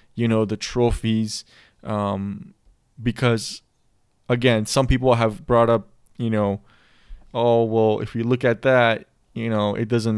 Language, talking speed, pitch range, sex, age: English, 145 wpm, 110-120 Hz, male, 20-39